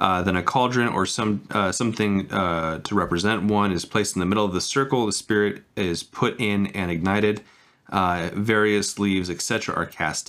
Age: 30-49